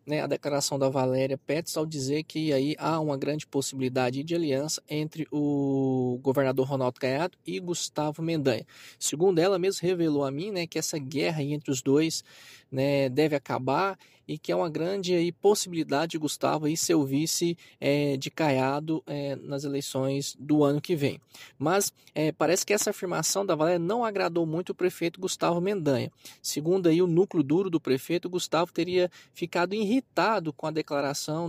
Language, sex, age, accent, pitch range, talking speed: Portuguese, male, 20-39, Brazilian, 140-195 Hz, 165 wpm